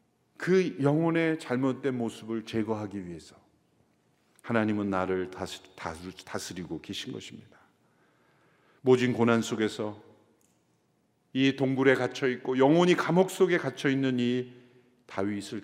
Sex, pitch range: male, 115-175 Hz